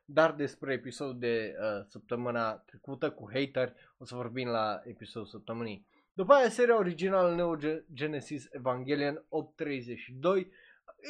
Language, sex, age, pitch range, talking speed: Romanian, male, 20-39, 130-180 Hz, 120 wpm